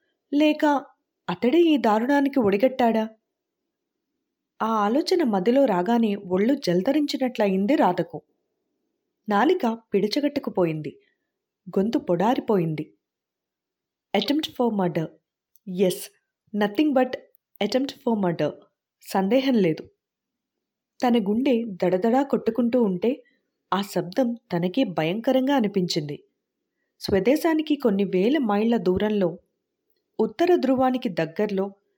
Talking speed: 80 wpm